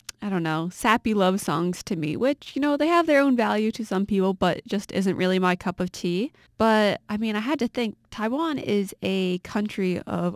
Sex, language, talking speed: female, English, 225 wpm